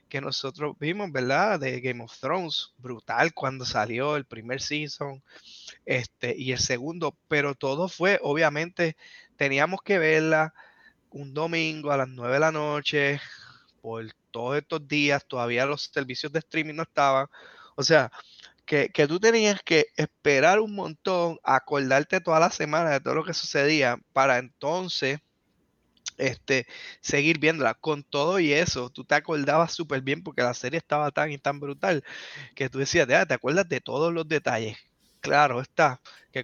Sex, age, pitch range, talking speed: male, 20-39, 125-160 Hz, 165 wpm